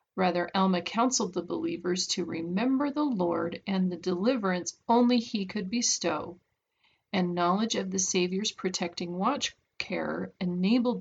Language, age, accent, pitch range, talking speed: English, 40-59, American, 180-230 Hz, 135 wpm